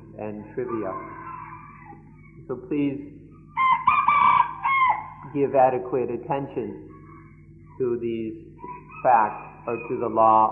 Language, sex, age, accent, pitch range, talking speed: English, male, 50-69, American, 110-140 Hz, 80 wpm